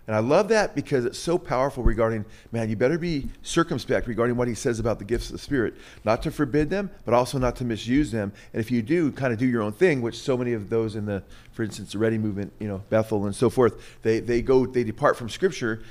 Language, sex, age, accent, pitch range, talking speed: English, male, 40-59, American, 110-130 Hz, 260 wpm